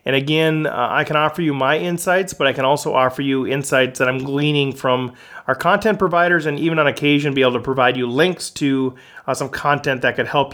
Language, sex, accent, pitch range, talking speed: English, male, American, 140-175 Hz, 230 wpm